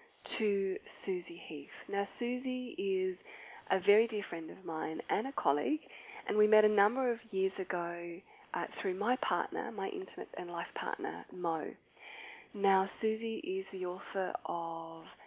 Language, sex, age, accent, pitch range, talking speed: English, female, 20-39, Australian, 180-265 Hz, 155 wpm